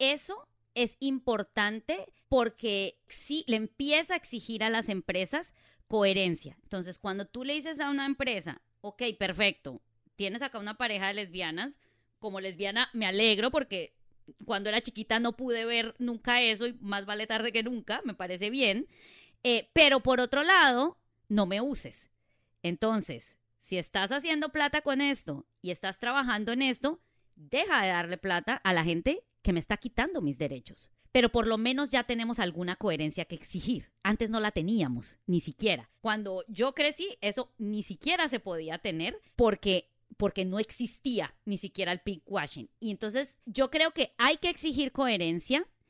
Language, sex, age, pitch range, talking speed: English, female, 30-49, 195-260 Hz, 165 wpm